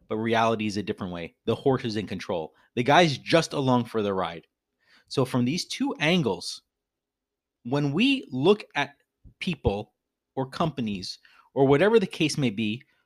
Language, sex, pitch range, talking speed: English, male, 115-160 Hz, 165 wpm